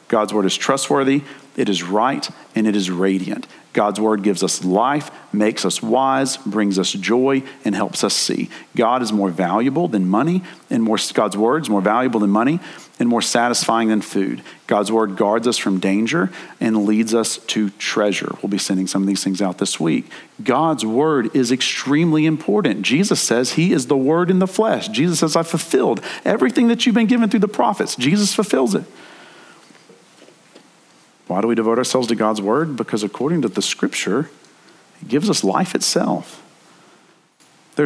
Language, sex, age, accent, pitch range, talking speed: English, male, 40-59, American, 105-140 Hz, 180 wpm